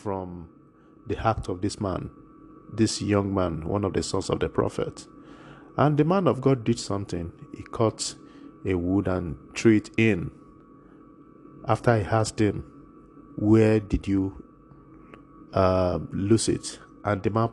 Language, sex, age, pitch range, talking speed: English, male, 50-69, 95-115 Hz, 150 wpm